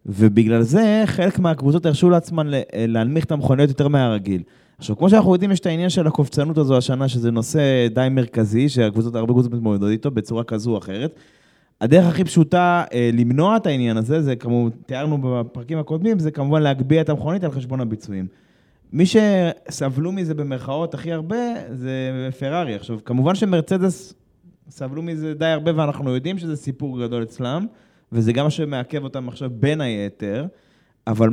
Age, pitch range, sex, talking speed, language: 20-39, 125-180 Hz, male, 150 wpm, Hebrew